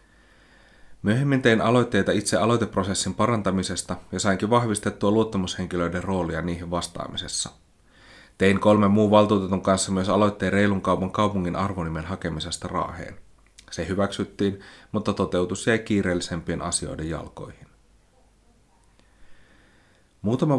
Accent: native